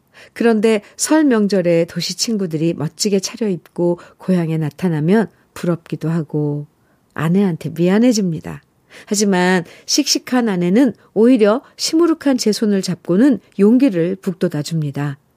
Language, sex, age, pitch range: Korean, female, 50-69, 160-235 Hz